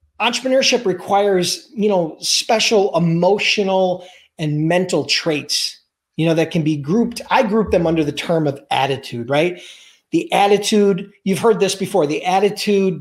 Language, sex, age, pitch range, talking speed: English, male, 40-59, 165-220 Hz, 150 wpm